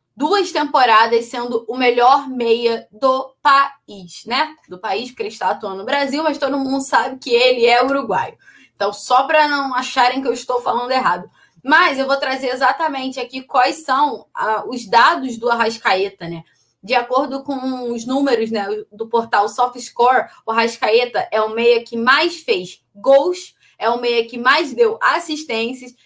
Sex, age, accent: female, 20-39, Brazilian